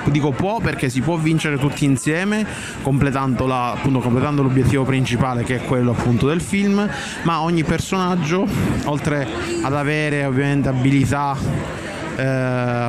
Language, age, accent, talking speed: Italian, 30-49, native, 135 wpm